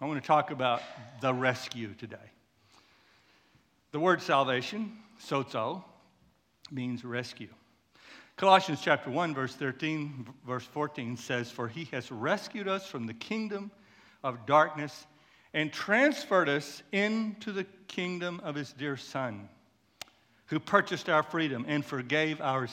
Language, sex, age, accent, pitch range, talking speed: English, male, 60-79, American, 125-170 Hz, 130 wpm